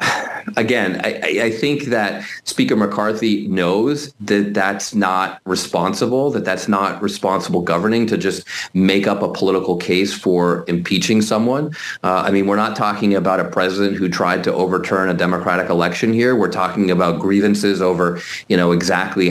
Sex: male